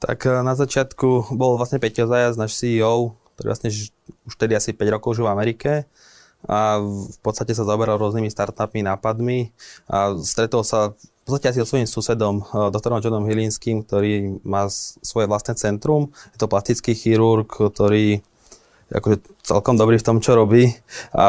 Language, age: Slovak, 20-39